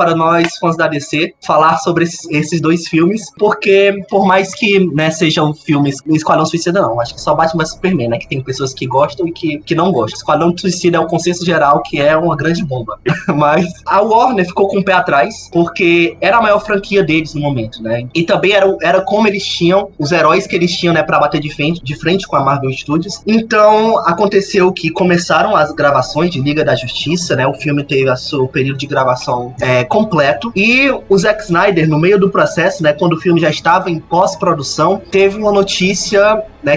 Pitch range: 155-195 Hz